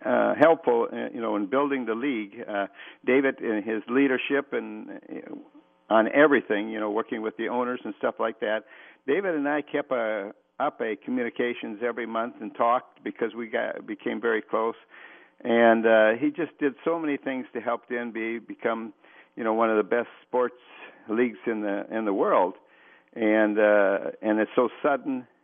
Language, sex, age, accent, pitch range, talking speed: English, male, 60-79, American, 110-140 Hz, 180 wpm